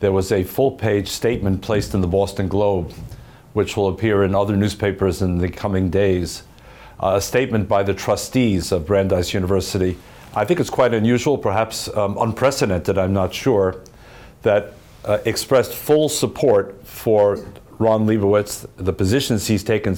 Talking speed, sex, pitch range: 155 wpm, male, 100-120 Hz